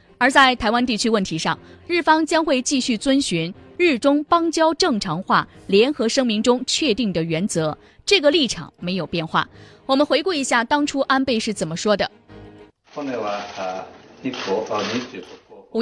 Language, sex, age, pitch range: Chinese, female, 20-39, 185-270 Hz